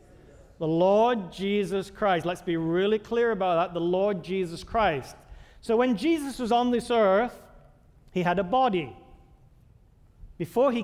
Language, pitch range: English, 160-205 Hz